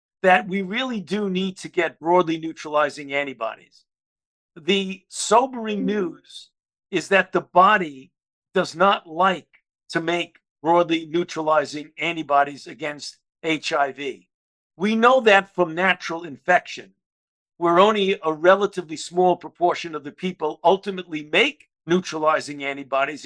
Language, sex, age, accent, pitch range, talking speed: English, male, 50-69, American, 155-195 Hz, 120 wpm